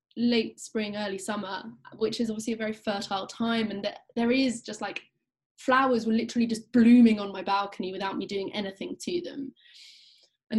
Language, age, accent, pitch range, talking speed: English, 20-39, British, 205-245 Hz, 175 wpm